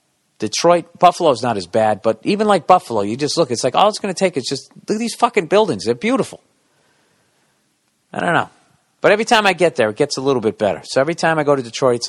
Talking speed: 260 wpm